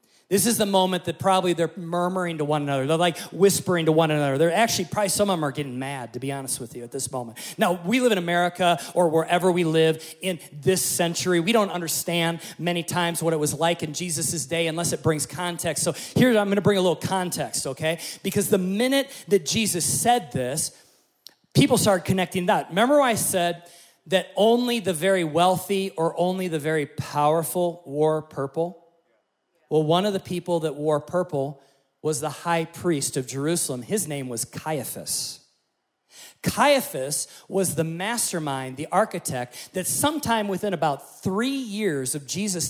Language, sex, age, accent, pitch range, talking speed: English, male, 30-49, American, 150-190 Hz, 185 wpm